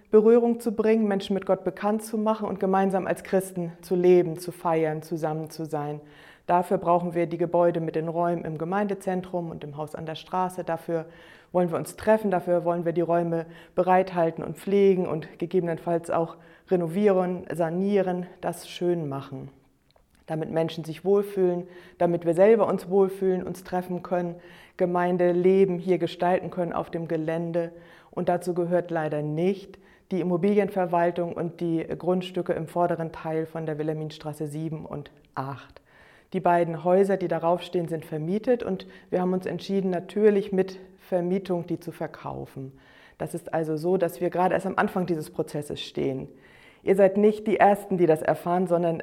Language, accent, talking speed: German, German, 165 wpm